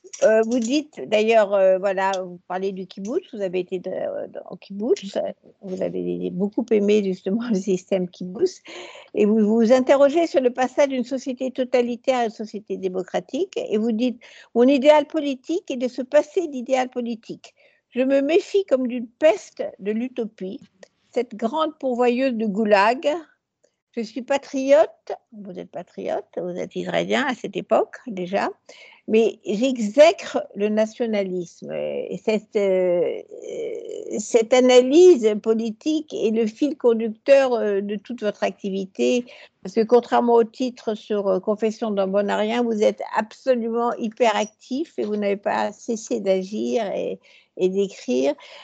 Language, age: French, 60-79